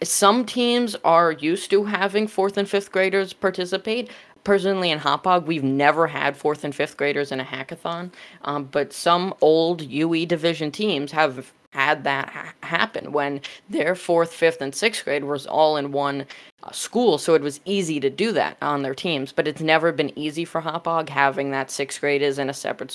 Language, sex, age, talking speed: English, female, 20-39, 190 wpm